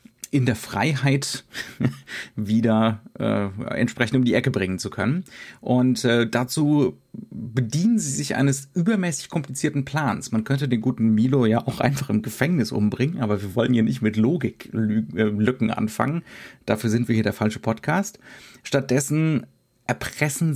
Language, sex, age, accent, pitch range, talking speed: German, male, 30-49, German, 110-135 Hz, 145 wpm